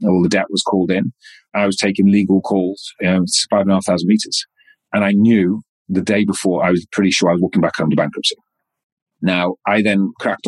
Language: English